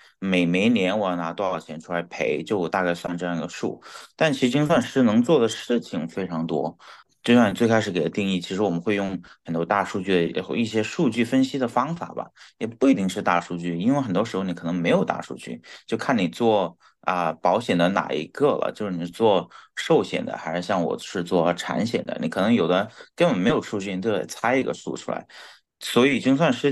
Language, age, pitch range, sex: Chinese, 30-49, 85-105 Hz, male